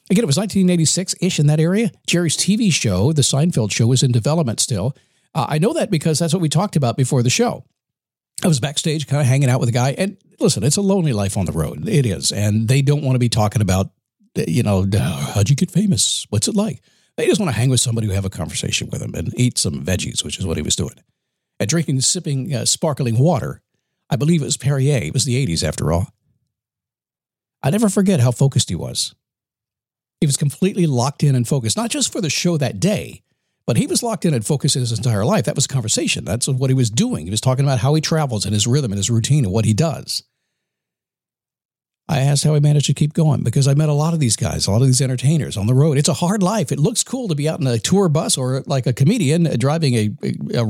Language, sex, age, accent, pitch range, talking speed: English, male, 50-69, American, 120-165 Hz, 250 wpm